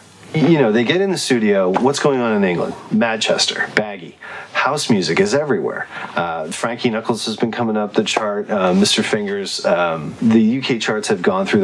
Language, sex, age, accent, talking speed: English, male, 30-49, American, 190 wpm